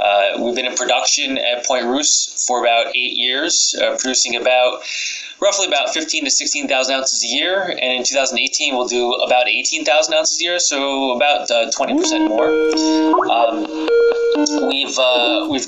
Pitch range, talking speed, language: 115-140 Hz, 180 wpm, English